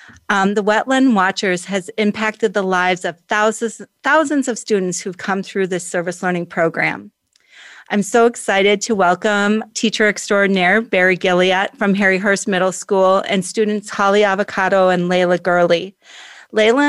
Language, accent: English, American